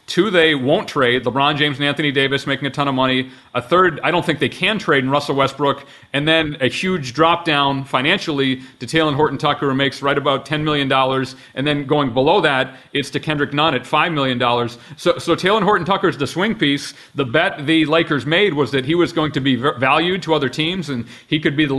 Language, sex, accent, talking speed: English, male, American, 235 wpm